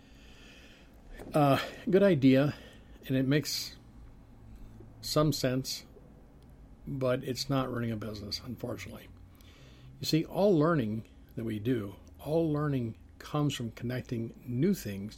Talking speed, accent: 120 wpm, American